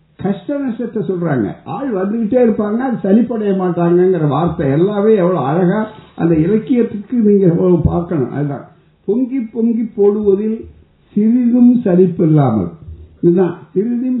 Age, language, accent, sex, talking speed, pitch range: 60-79, Tamil, native, male, 95 wpm, 160-215 Hz